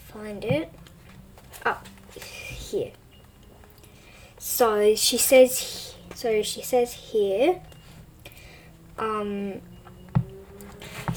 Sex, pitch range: female, 215-290 Hz